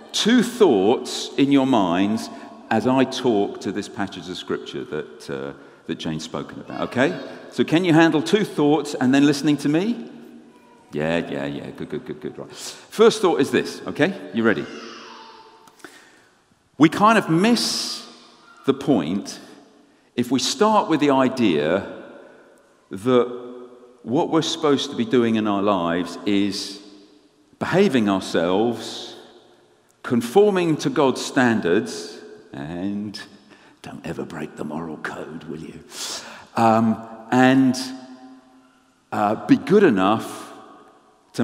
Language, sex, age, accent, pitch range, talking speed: English, male, 50-69, British, 100-155 Hz, 130 wpm